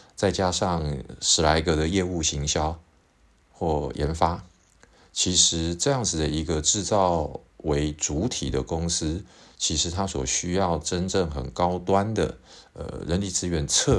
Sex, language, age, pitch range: male, Chinese, 50-69, 75-95 Hz